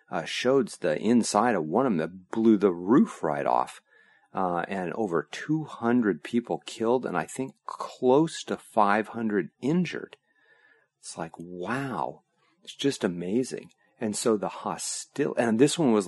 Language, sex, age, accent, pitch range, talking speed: English, male, 40-59, American, 80-115 Hz, 155 wpm